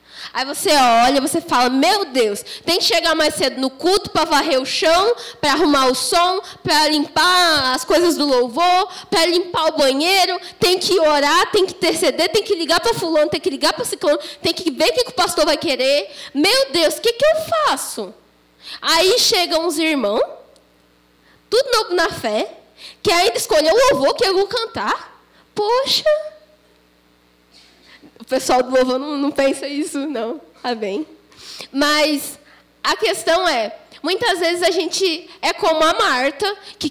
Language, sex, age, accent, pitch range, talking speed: Portuguese, female, 10-29, Brazilian, 275-365 Hz, 170 wpm